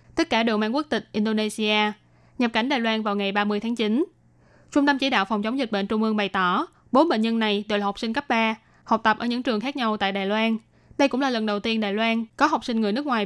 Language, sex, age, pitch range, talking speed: Vietnamese, female, 10-29, 210-260 Hz, 280 wpm